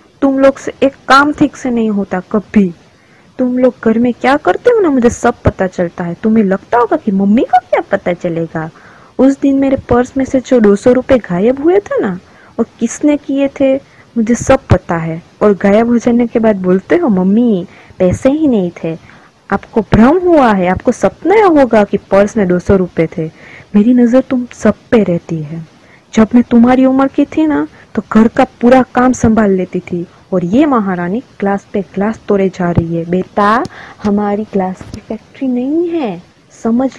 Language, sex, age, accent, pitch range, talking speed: Hindi, female, 20-39, native, 195-265 Hz, 190 wpm